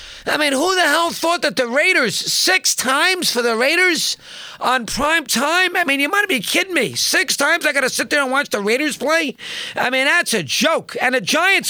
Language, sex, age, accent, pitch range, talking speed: English, male, 40-59, American, 225-320 Hz, 225 wpm